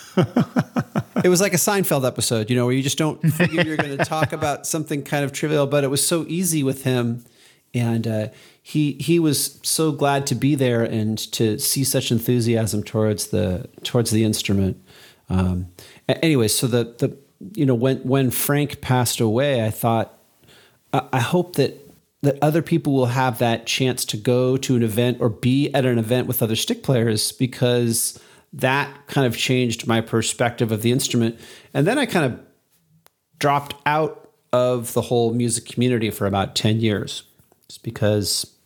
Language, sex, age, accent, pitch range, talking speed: English, male, 40-59, American, 110-140 Hz, 180 wpm